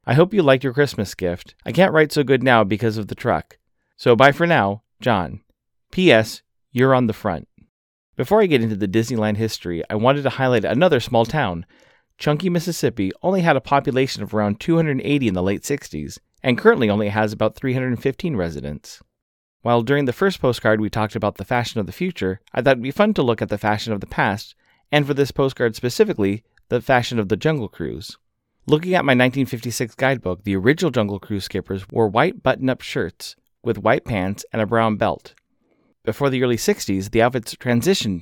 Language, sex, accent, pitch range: English, male, American, 105-135 Hz